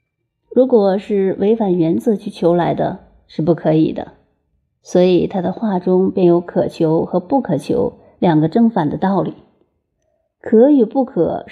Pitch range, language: 175-215 Hz, Chinese